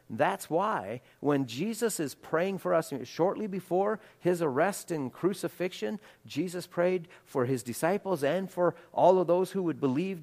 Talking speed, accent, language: 160 wpm, American, English